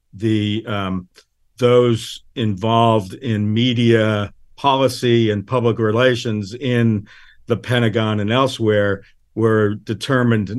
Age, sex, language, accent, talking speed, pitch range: 50-69, male, English, American, 95 wpm, 105-120 Hz